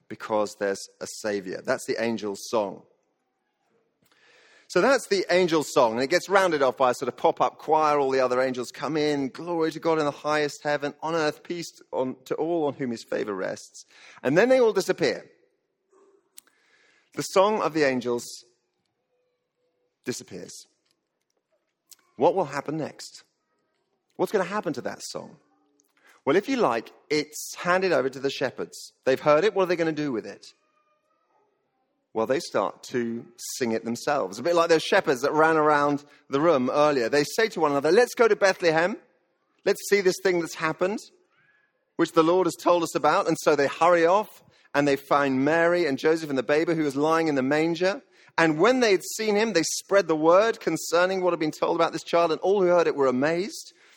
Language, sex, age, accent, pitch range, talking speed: English, male, 40-59, British, 145-200 Hz, 195 wpm